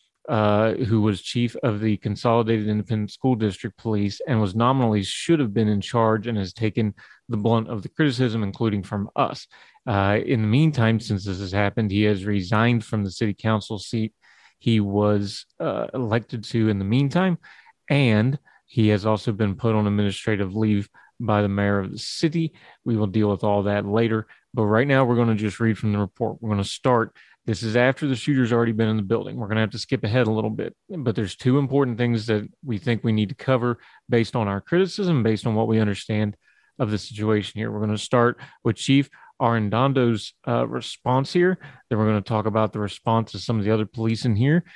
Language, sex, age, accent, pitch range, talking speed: English, male, 30-49, American, 105-120 Hz, 215 wpm